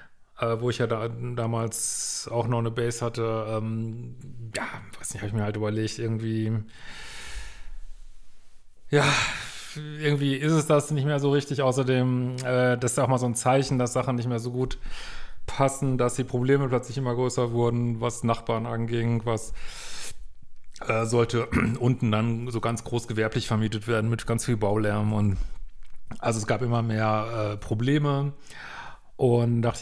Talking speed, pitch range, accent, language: 165 wpm, 115-135 Hz, German, German